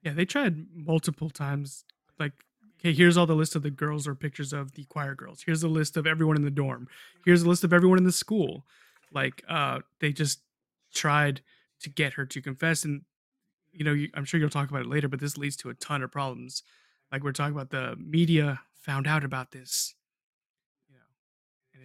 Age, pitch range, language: 20-39, 140-170 Hz, English